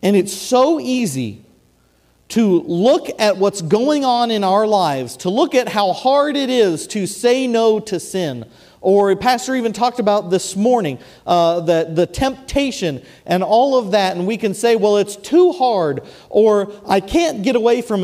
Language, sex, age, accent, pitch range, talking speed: English, male, 40-59, American, 140-230 Hz, 180 wpm